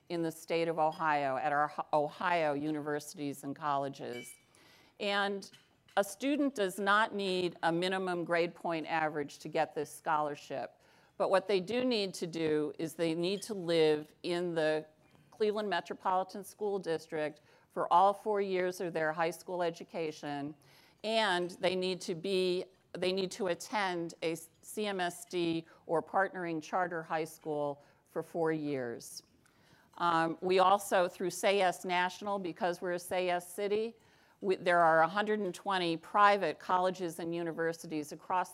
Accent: American